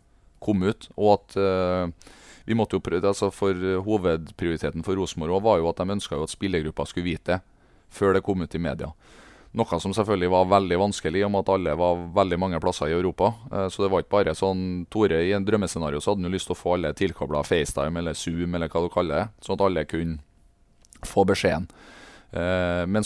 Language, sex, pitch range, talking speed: English, male, 90-105 Hz, 200 wpm